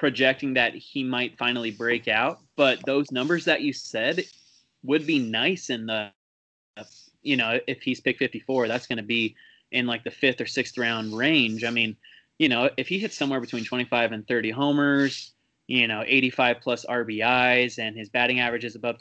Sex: male